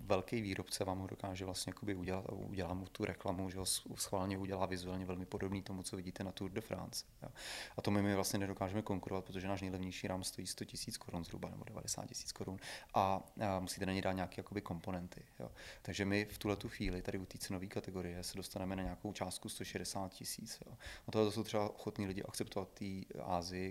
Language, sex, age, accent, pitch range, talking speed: Czech, male, 30-49, native, 95-105 Hz, 210 wpm